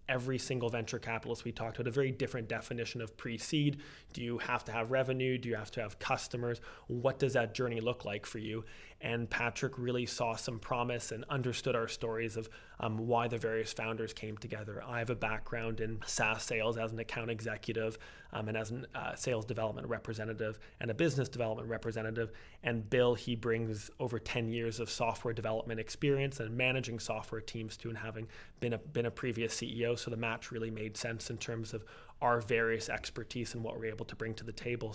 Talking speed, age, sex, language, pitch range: 210 wpm, 20-39, male, English, 115-125 Hz